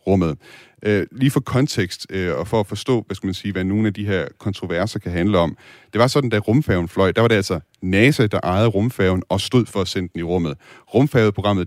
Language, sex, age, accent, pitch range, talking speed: Danish, male, 30-49, native, 90-110 Hz, 225 wpm